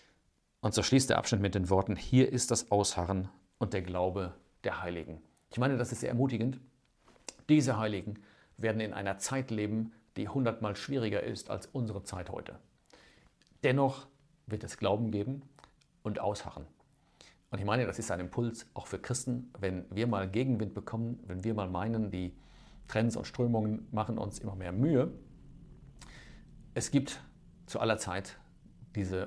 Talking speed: 160 wpm